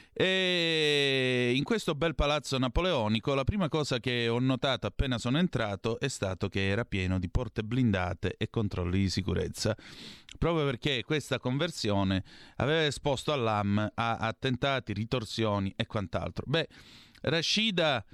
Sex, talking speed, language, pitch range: male, 135 wpm, Italian, 110-145 Hz